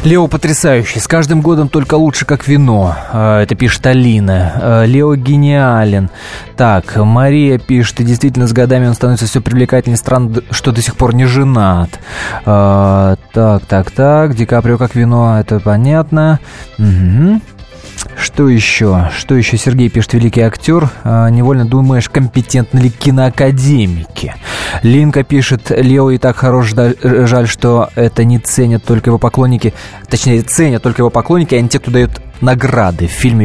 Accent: native